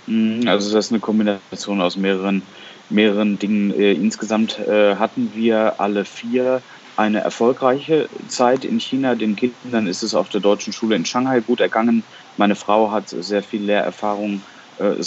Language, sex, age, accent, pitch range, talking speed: German, male, 30-49, German, 100-115 Hz, 155 wpm